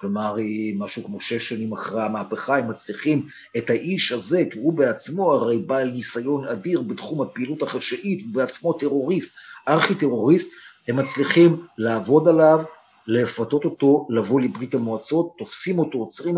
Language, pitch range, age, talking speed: Hebrew, 120-145 Hz, 50-69, 145 wpm